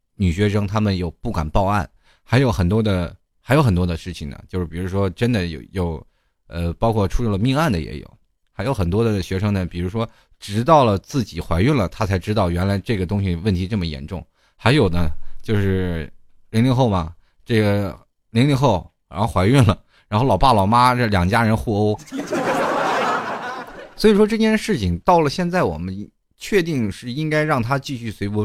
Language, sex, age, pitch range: Chinese, male, 20-39, 90-140 Hz